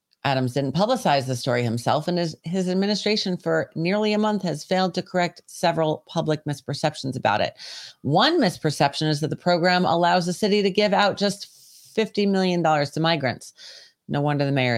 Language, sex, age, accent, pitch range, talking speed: English, female, 40-59, American, 155-205 Hz, 180 wpm